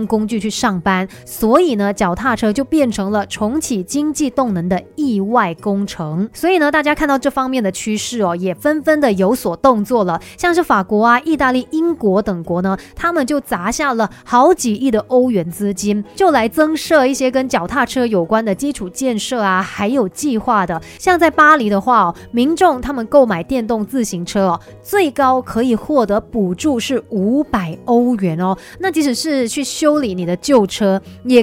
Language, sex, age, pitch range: Chinese, female, 30-49, 205-285 Hz